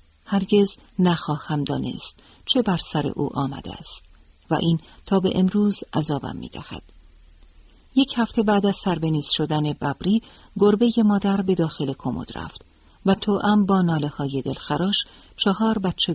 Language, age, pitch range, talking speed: Persian, 50-69, 135-195 Hz, 140 wpm